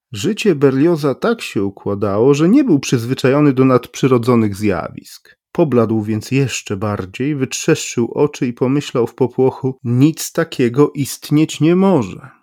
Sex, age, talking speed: male, 40-59, 130 wpm